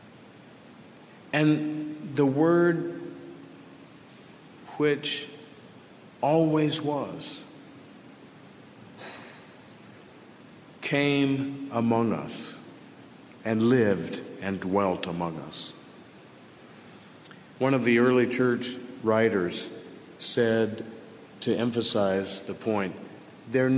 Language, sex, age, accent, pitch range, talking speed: English, male, 50-69, American, 115-145 Hz, 70 wpm